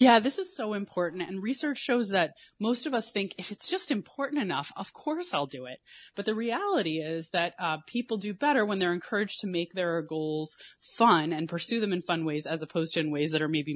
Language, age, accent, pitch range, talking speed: English, 20-39, American, 160-205 Hz, 235 wpm